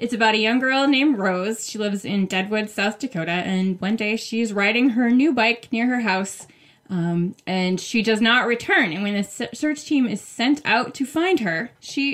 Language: English